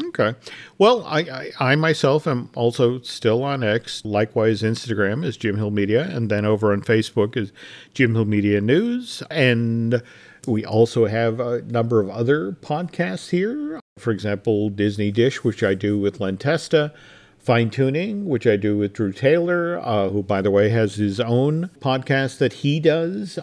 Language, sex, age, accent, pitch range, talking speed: English, male, 50-69, American, 110-155 Hz, 165 wpm